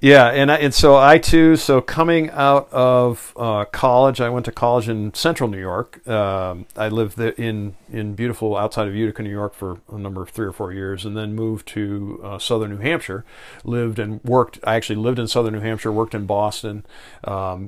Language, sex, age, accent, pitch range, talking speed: English, male, 50-69, American, 105-120 Hz, 210 wpm